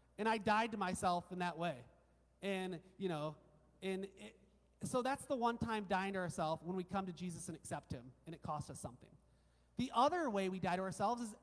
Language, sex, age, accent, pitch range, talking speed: English, male, 30-49, American, 180-255 Hz, 220 wpm